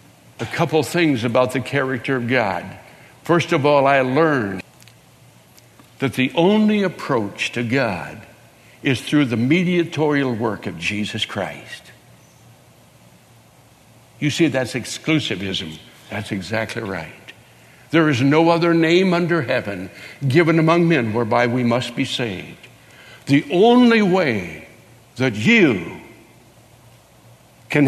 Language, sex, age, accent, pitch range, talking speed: English, male, 60-79, American, 125-195 Hz, 120 wpm